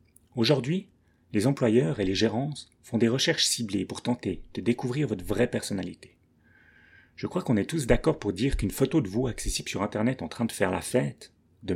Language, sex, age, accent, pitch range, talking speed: French, male, 30-49, French, 100-130 Hz, 200 wpm